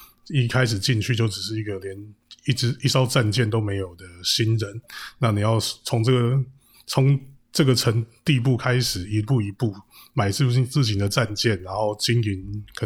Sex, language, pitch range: male, Chinese, 105-125 Hz